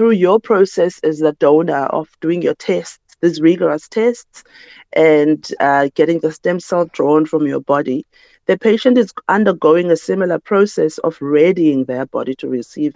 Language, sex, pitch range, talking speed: English, female, 155-200 Hz, 165 wpm